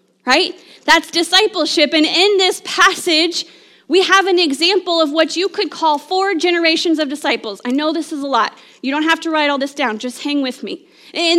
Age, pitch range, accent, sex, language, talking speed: 30-49, 305-380 Hz, American, female, English, 205 wpm